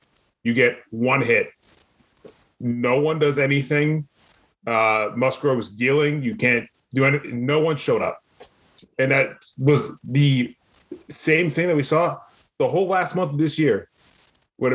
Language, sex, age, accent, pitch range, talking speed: English, male, 30-49, American, 115-145 Hz, 145 wpm